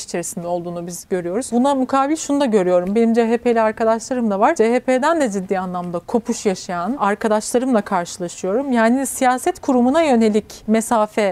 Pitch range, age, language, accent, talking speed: 205-260 Hz, 40-59, Turkish, native, 145 wpm